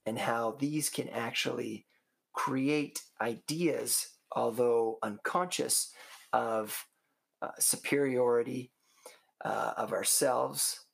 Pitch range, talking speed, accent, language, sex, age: 115-145 Hz, 80 wpm, American, English, male, 30-49